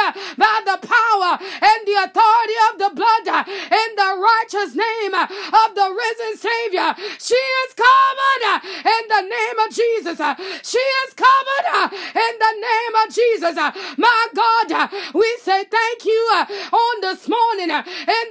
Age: 30-49